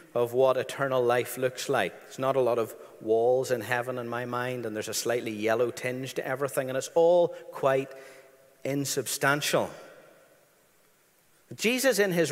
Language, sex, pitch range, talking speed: English, male, 125-180 Hz, 160 wpm